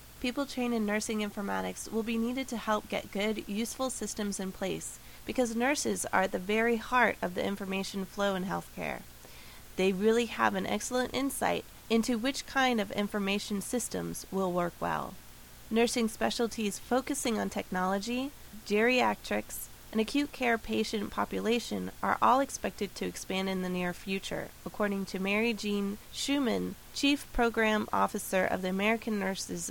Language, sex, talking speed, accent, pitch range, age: English, female, 155 wpm, American, 190-235 Hz, 30-49